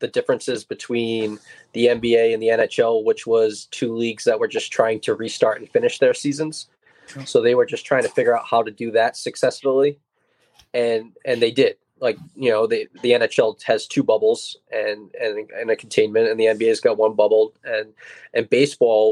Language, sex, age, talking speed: English, male, 20-39, 195 wpm